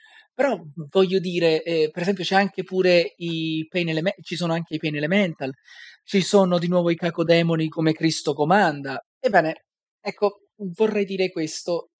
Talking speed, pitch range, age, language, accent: 155 wpm, 155-200 Hz, 30-49, Italian, native